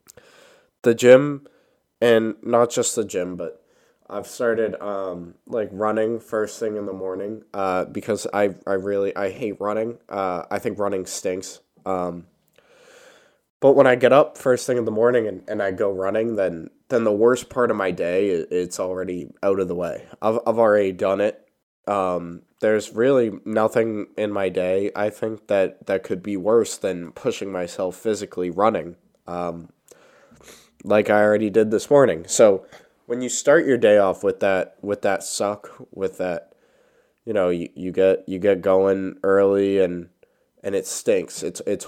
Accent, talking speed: American, 175 wpm